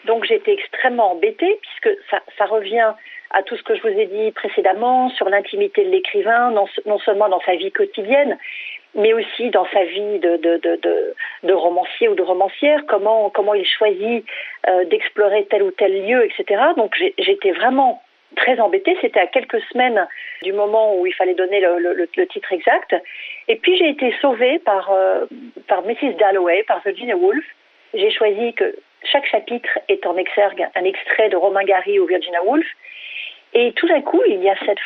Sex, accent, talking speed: female, French, 190 wpm